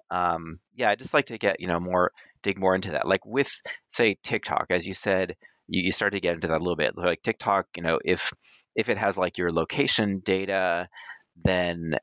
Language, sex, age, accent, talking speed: English, male, 30-49, American, 220 wpm